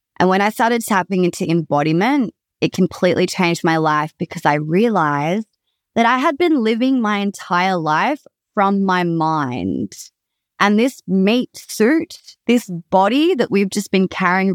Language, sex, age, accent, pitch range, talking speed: English, female, 20-39, Australian, 170-200 Hz, 155 wpm